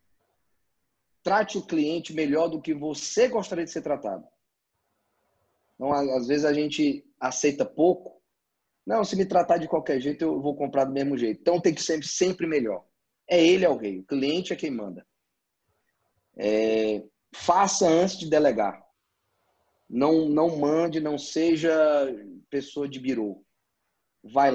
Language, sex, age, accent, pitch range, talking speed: Portuguese, male, 20-39, Brazilian, 135-165 Hz, 140 wpm